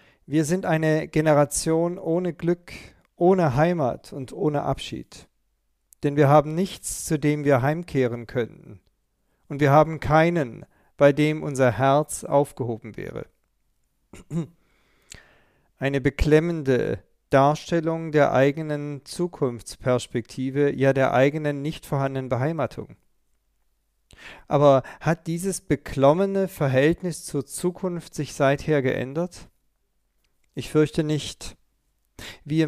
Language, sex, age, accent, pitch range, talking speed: German, male, 40-59, German, 135-160 Hz, 105 wpm